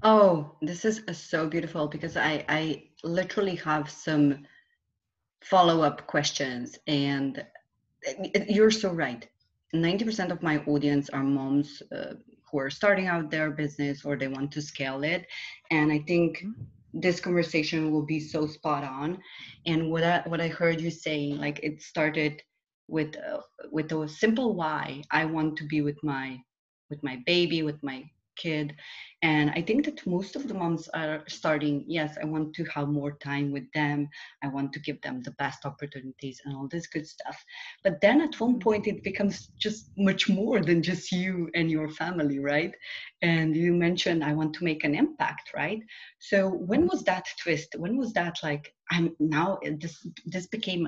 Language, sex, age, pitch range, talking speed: English, female, 30-49, 150-180 Hz, 175 wpm